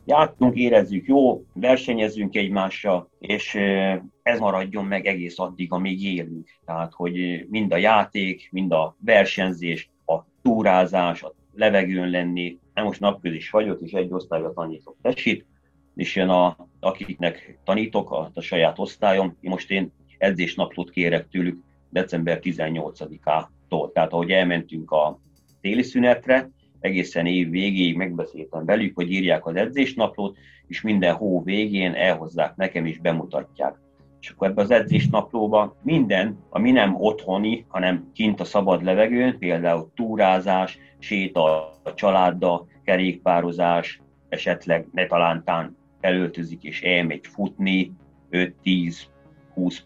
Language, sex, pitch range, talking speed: Hungarian, male, 85-95 Hz, 120 wpm